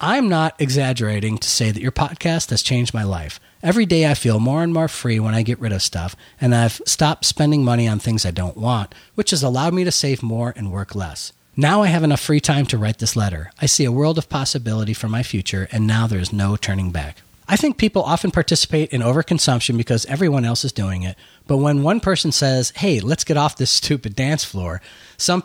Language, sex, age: English, male, 40-59